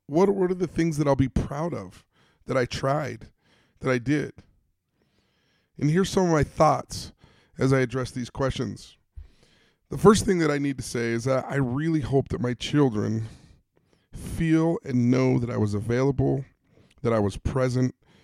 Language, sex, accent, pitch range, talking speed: English, male, American, 120-155 Hz, 180 wpm